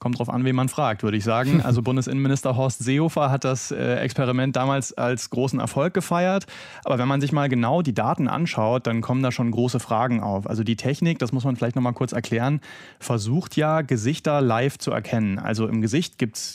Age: 30-49